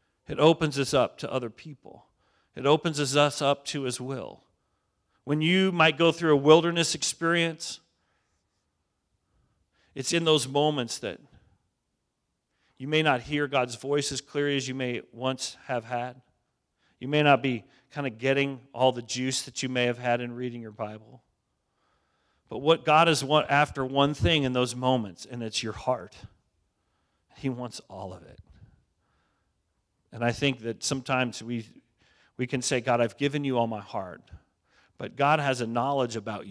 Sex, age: male, 40-59